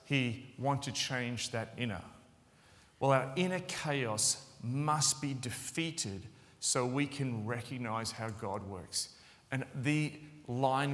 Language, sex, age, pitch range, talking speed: English, male, 40-59, 110-140 Hz, 125 wpm